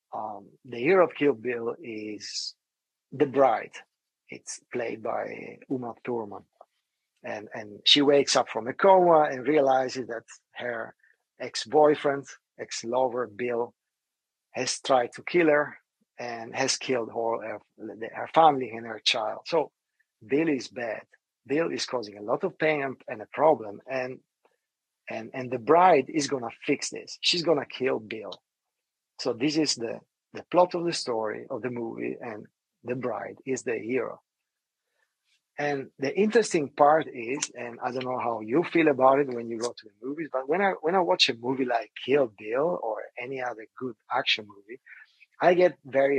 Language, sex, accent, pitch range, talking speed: English, male, Italian, 125-160 Hz, 170 wpm